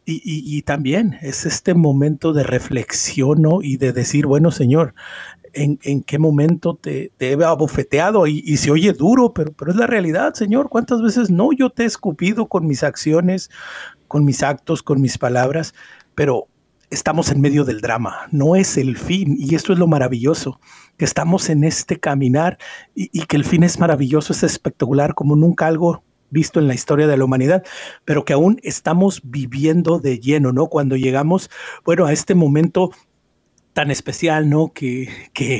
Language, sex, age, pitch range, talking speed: Spanish, male, 50-69, 140-170 Hz, 180 wpm